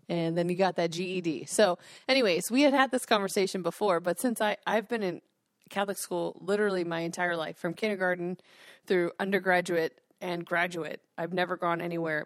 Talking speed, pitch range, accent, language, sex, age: 170 wpm, 170-200 Hz, American, English, female, 30-49